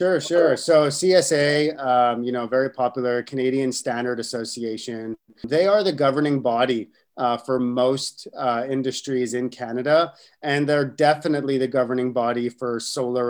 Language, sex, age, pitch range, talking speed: English, male, 30-49, 120-150 Hz, 145 wpm